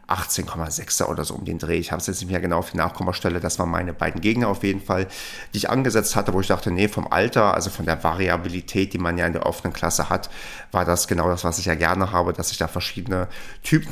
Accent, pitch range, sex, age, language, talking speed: German, 90-110 Hz, male, 30-49, German, 260 wpm